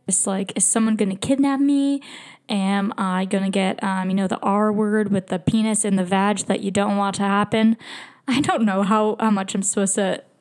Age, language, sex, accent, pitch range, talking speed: 10-29, English, female, American, 195-235 Hz, 230 wpm